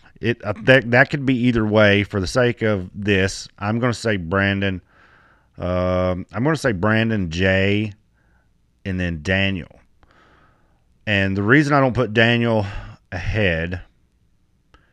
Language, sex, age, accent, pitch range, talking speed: English, male, 30-49, American, 90-110 Hz, 135 wpm